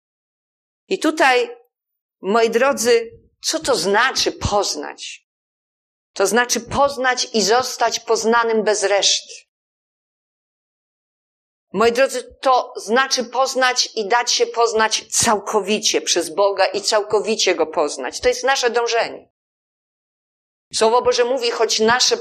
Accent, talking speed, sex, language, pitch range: native, 110 wpm, female, Polish, 205-255 Hz